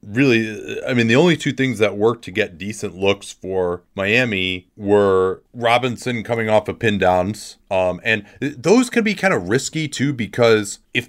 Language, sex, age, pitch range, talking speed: English, male, 30-49, 95-115 Hz, 180 wpm